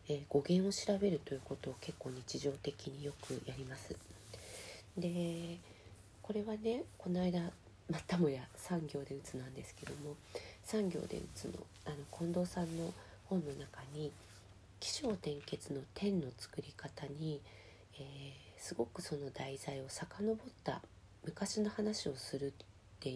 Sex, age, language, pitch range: female, 40-59, Japanese, 110-165 Hz